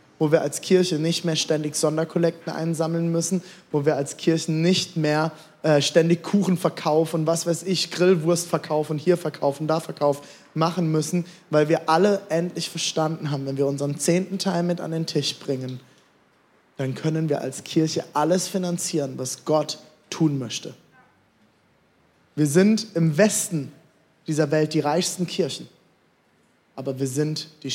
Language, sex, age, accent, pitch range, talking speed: German, male, 20-39, German, 150-175 Hz, 155 wpm